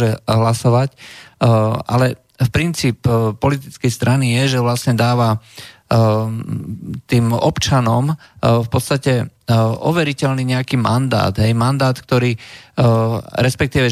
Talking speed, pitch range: 90 wpm, 115-140 Hz